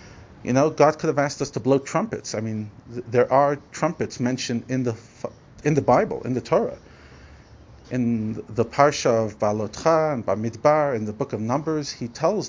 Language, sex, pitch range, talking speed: English, male, 110-135 Hz, 185 wpm